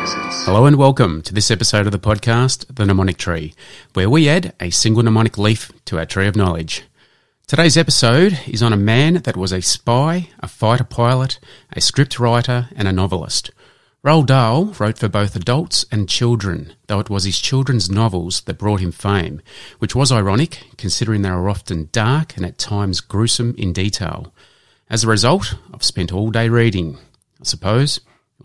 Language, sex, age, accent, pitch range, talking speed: English, male, 30-49, Australian, 95-125 Hz, 180 wpm